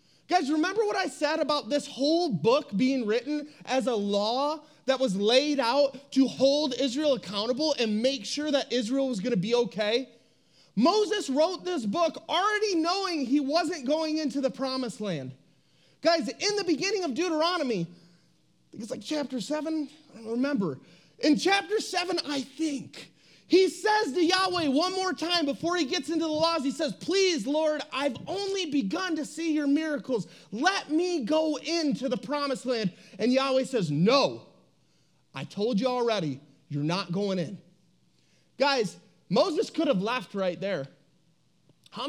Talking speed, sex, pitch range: 165 wpm, male, 220-315 Hz